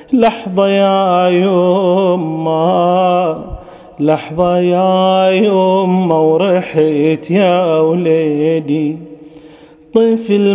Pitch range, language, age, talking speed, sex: 185-230 Hz, Arabic, 30-49, 55 wpm, male